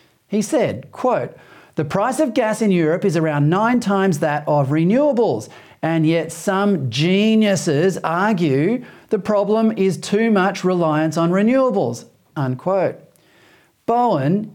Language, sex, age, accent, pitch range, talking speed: English, male, 40-59, Australian, 160-220 Hz, 130 wpm